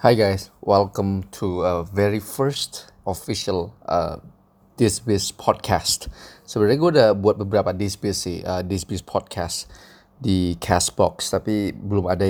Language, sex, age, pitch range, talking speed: Indonesian, male, 20-39, 95-110 Hz, 120 wpm